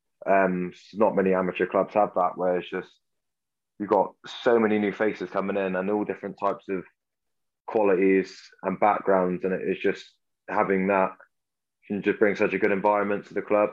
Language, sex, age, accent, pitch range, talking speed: English, male, 20-39, British, 95-100 Hz, 180 wpm